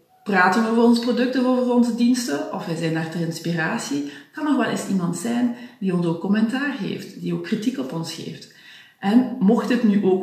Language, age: Dutch, 40-59